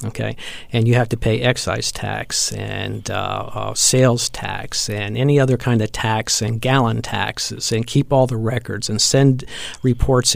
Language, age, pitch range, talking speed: English, 50-69, 110-130 Hz, 175 wpm